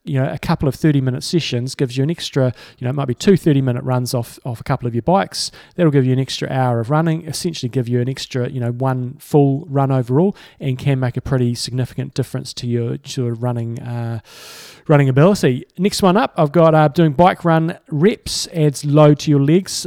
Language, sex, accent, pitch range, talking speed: English, male, Australian, 125-150 Hz, 235 wpm